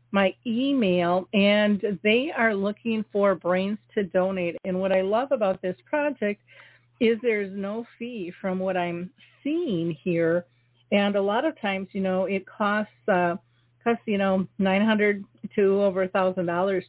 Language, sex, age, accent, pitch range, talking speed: English, female, 50-69, American, 180-210 Hz, 165 wpm